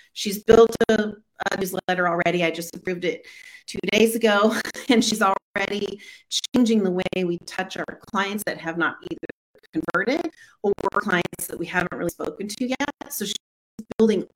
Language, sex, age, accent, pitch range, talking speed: English, female, 30-49, American, 175-215 Hz, 165 wpm